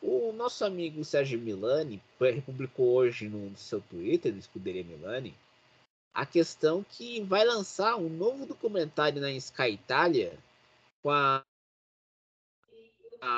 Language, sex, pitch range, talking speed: Portuguese, male, 140-220 Hz, 115 wpm